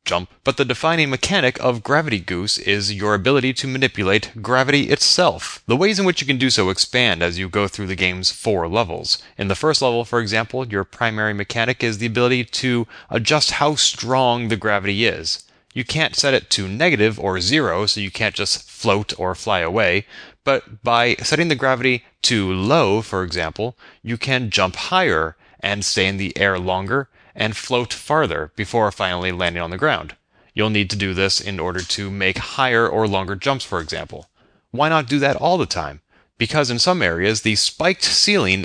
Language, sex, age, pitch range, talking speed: English, male, 30-49, 100-130 Hz, 195 wpm